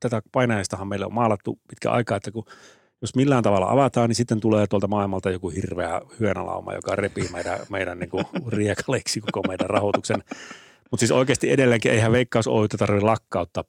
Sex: male